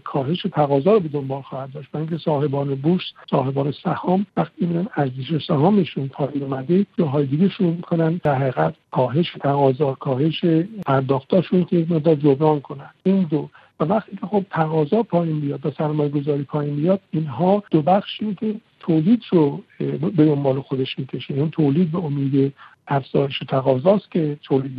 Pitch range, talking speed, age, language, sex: 140-175 Hz, 155 wpm, 60-79, Persian, male